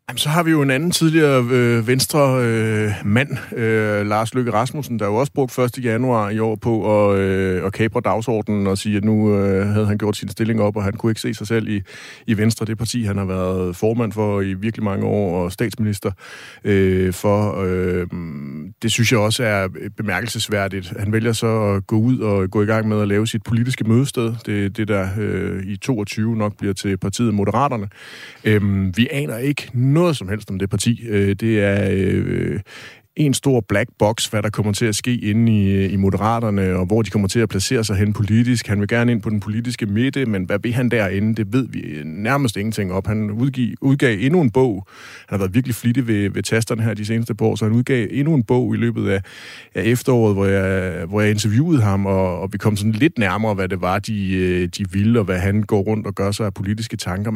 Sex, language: male, Danish